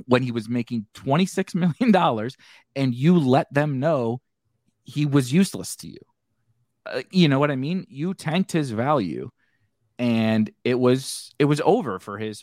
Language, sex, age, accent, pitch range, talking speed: English, male, 30-49, American, 105-135 Hz, 170 wpm